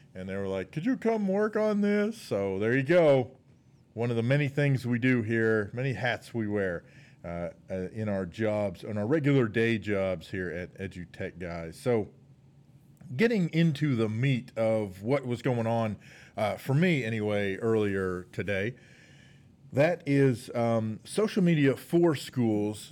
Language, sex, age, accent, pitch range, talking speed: English, male, 40-59, American, 110-140 Hz, 160 wpm